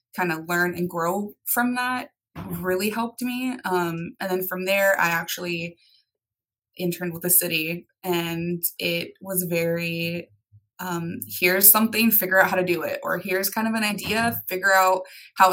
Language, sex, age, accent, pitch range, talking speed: English, female, 20-39, American, 175-205 Hz, 165 wpm